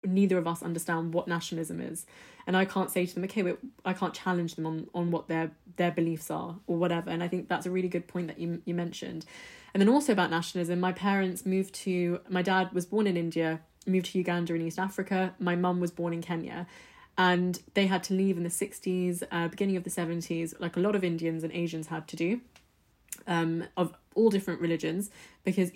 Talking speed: 220 wpm